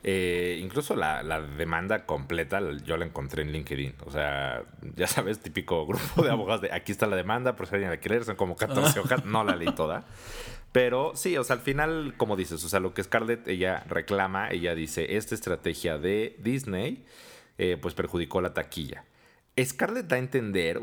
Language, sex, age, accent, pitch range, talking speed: Spanish, male, 30-49, Mexican, 80-100 Hz, 185 wpm